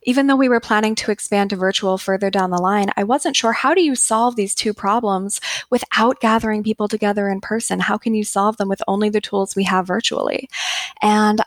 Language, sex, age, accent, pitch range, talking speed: English, female, 10-29, American, 190-230 Hz, 220 wpm